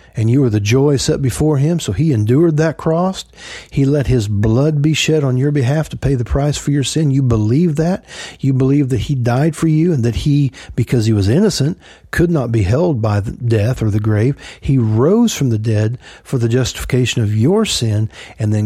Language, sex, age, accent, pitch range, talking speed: English, male, 40-59, American, 110-145 Hz, 220 wpm